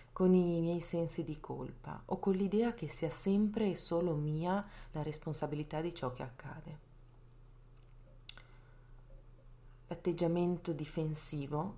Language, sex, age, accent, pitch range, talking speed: Italian, female, 30-49, native, 130-175 Hz, 115 wpm